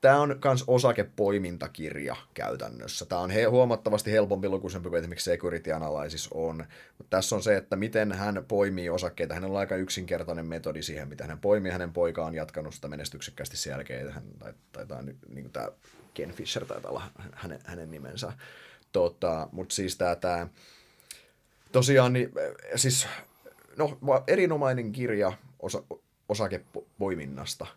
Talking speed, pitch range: 140 wpm, 85-120 Hz